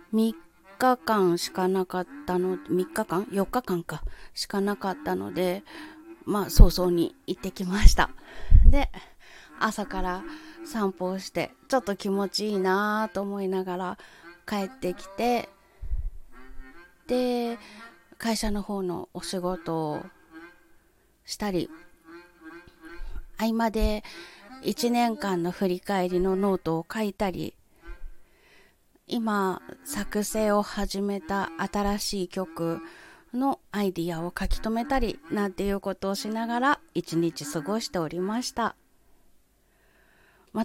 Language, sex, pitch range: Japanese, female, 180-225 Hz